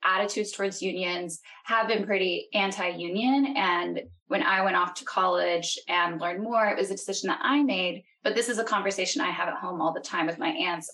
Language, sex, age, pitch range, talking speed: English, female, 10-29, 190-255 Hz, 215 wpm